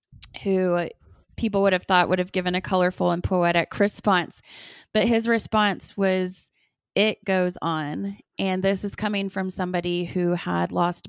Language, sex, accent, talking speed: English, female, American, 155 wpm